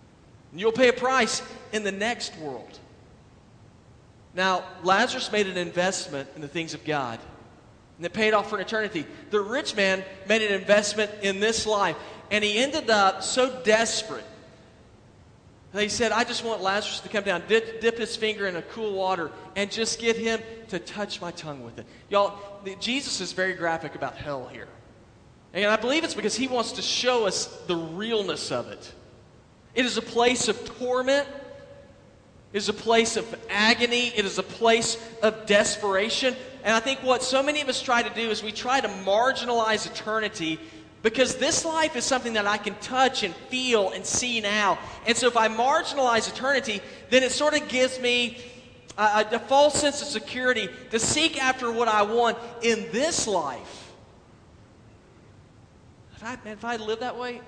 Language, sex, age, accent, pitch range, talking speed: English, male, 40-59, American, 195-245 Hz, 180 wpm